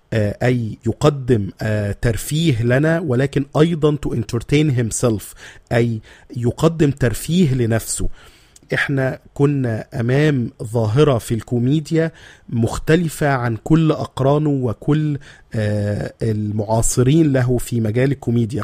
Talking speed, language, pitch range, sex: 85 wpm, Arabic, 115-150 Hz, male